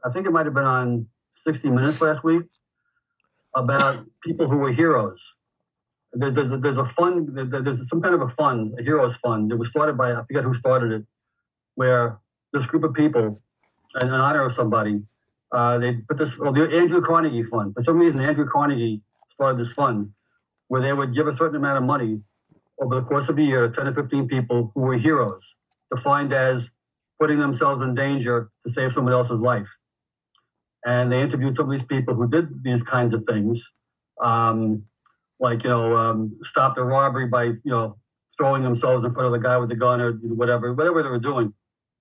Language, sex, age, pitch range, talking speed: English, male, 40-59, 120-150 Hz, 195 wpm